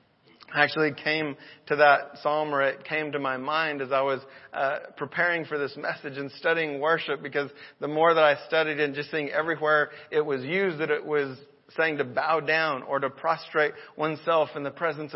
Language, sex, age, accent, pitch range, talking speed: English, male, 40-59, American, 150-180 Hz, 195 wpm